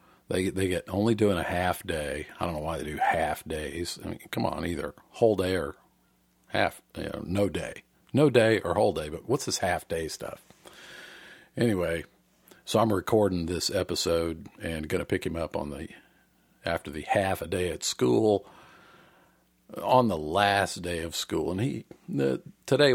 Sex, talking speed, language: male, 185 wpm, English